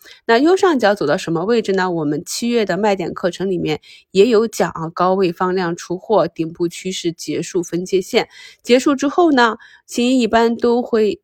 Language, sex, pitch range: Chinese, female, 170-215 Hz